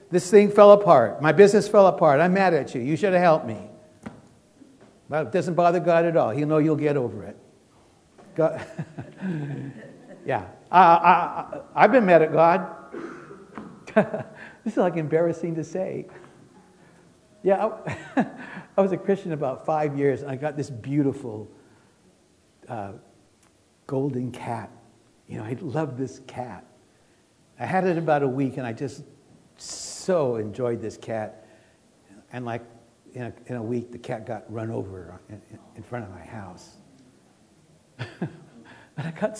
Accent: American